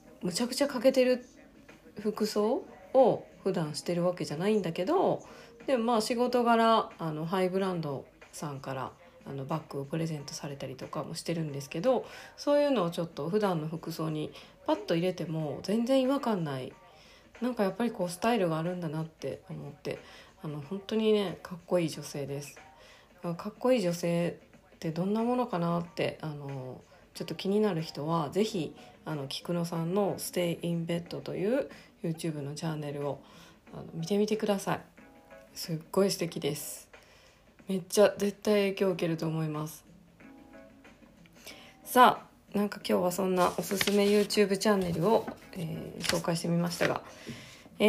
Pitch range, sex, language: 165-215 Hz, female, Japanese